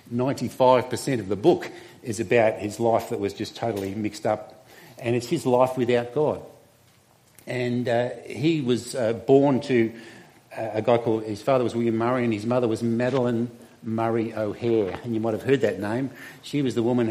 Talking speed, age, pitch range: 185 wpm, 50-69, 115-135 Hz